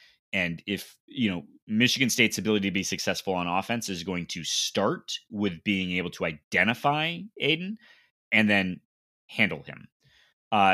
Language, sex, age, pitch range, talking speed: English, male, 20-39, 95-130 Hz, 150 wpm